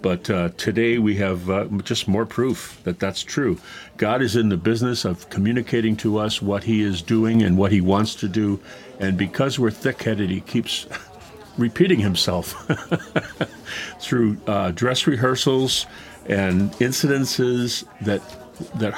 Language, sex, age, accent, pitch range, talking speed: English, male, 50-69, American, 95-120 Hz, 150 wpm